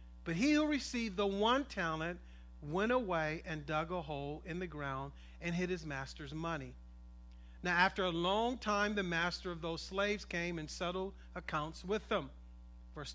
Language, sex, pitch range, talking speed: English, male, 150-220 Hz, 175 wpm